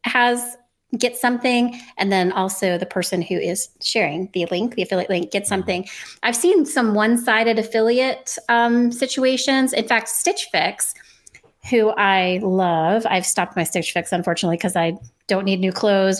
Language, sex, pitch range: English, female, 195-250 Hz